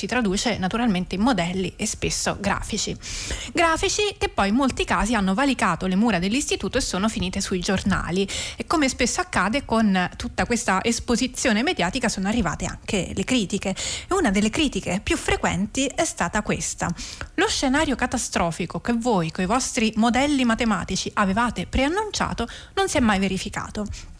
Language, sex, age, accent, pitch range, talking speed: Italian, female, 20-39, native, 195-265 Hz, 155 wpm